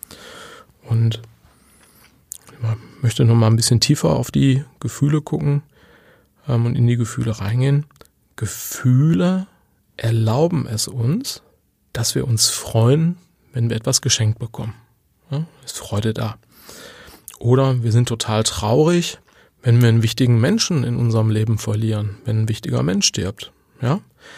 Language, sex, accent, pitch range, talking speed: German, male, German, 115-145 Hz, 135 wpm